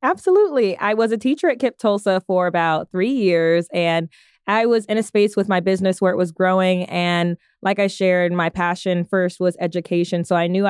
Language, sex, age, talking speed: English, female, 20-39, 210 wpm